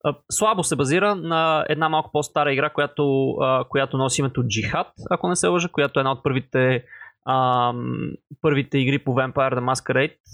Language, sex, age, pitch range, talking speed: Bulgarian, male, 20-39, 130-160 Hz, 170 wpm